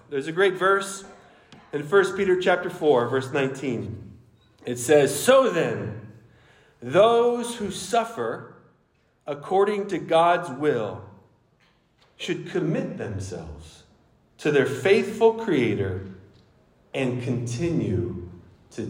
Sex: male